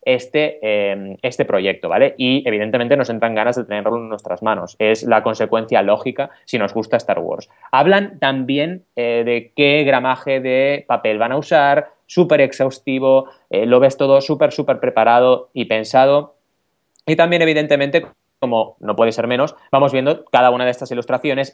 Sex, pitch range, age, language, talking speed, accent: male, 110-145 Hz, 20-39, Spanish, 165 wpm, Spanish